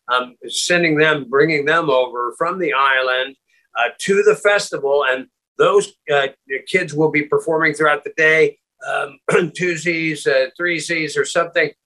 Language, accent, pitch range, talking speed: English, American, 140-190 Hz, 145 wpm